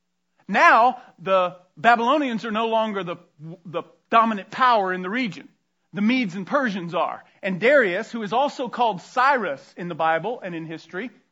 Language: English